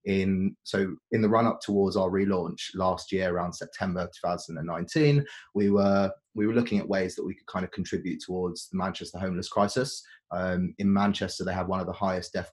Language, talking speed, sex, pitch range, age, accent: English, 195 wpm, male, 90-105 Hz, 20-39, British